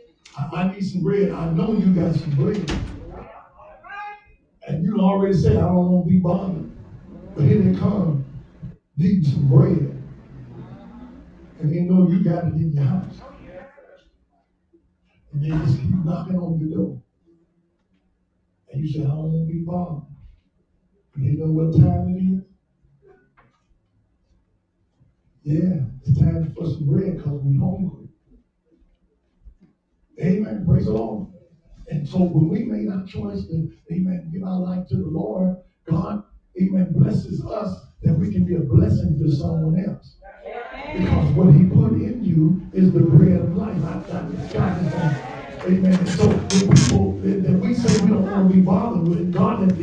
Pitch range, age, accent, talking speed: 150-190 Hz, 50-69, American, 160 wpm